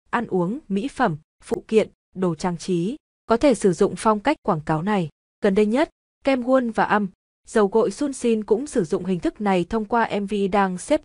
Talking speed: 210 wpm